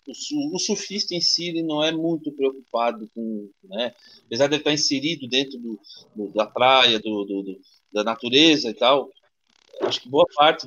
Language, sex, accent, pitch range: Portuguese, male, Brazilian, 120-160 Hz